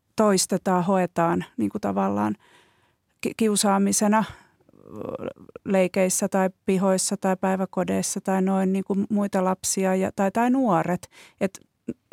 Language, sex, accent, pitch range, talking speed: Finnish, female, native, 175-210 Hz, 105 wpm